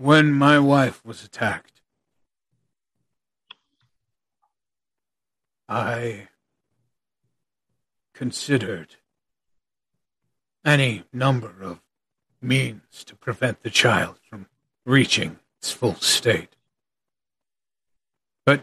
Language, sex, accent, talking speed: English, male, American, 70 wpm